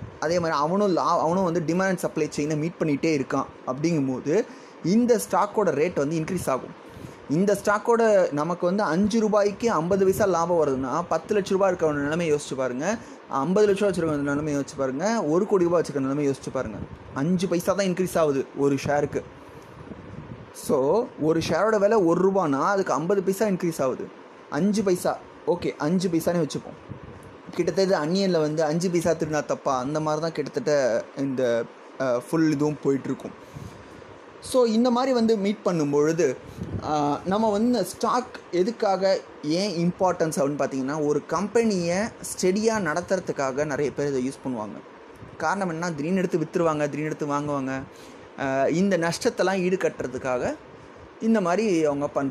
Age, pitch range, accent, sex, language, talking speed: 20-39, 145-195 Hz, Indian, male, English, 90 wpm